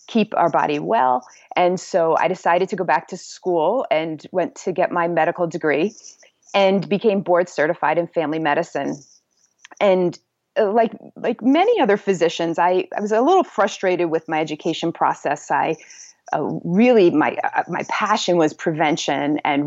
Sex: female